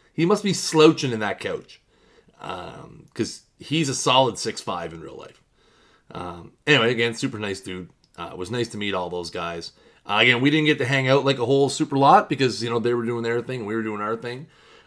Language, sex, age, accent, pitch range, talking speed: English, male, 30-49, American, 100-130 Hz, 240 wpm